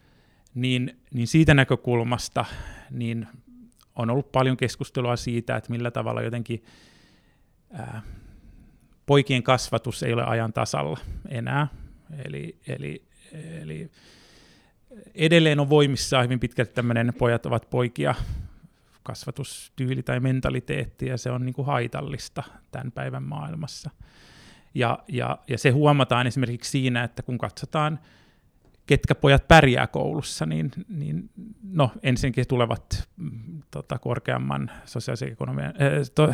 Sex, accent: male, native